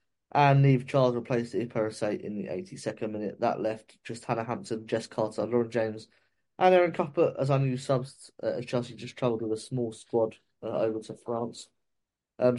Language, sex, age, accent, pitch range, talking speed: English, male, 20-39, British, 115-140 Hz, 185 wpm